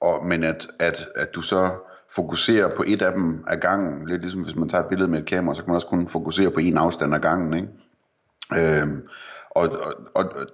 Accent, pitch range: native, 80-95 Hz